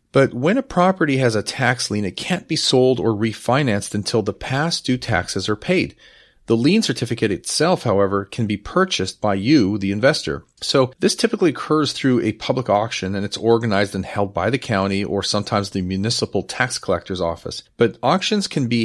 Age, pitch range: 40-59, 100-130 Hz